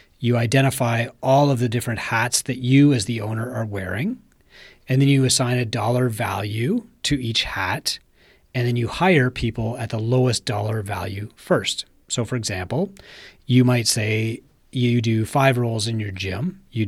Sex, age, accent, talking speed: male, 30-49, American, 175 wpm